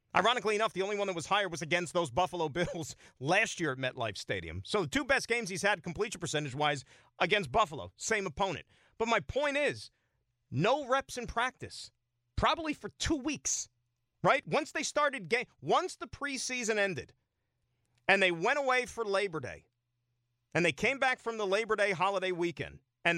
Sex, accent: male, American